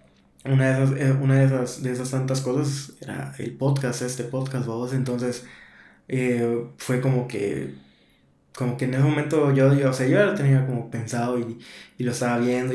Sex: male